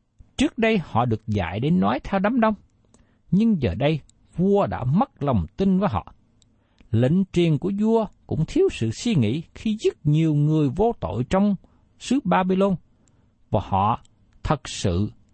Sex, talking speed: male, 165 wpm